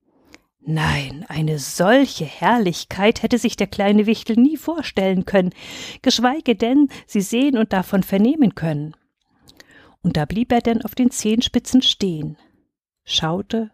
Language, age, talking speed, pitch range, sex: German, 50-69, 130 wpm, 175-240 Hz, female